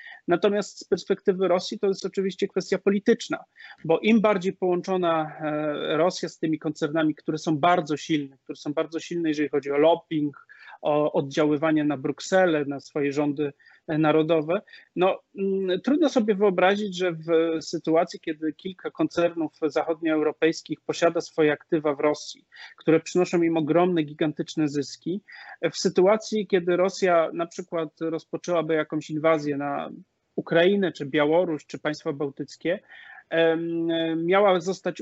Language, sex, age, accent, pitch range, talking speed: Polish, male, 30-49, native, 155-180 Hz, 135 wpm